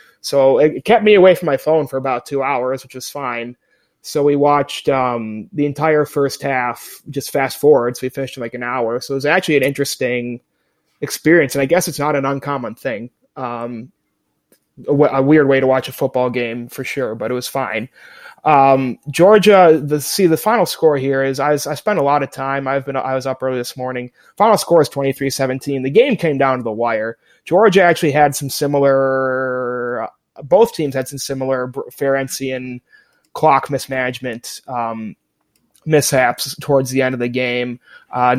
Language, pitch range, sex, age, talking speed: English, 130-145 Hz, male, 20-39, 190 wpm